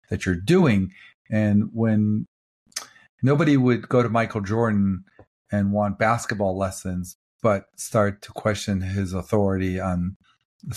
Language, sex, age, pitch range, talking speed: English, male, 50-69, 100-125 Hz, 130 wpm